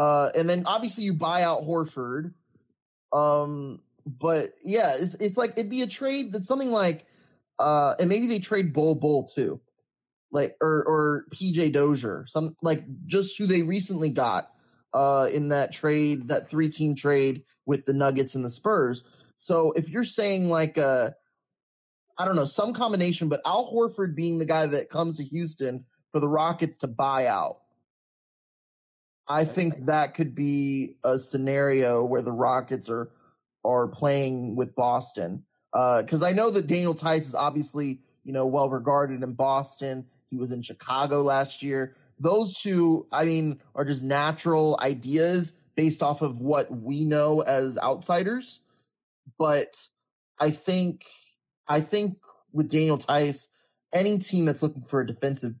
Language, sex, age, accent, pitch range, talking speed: English, male, 20-39, American, 135-170 Hz, 160 wpm